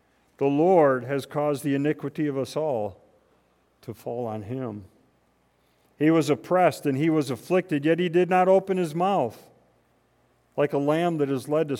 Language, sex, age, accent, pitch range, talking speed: English, male, 50-69, American, 125-155 Hz, 175 wpm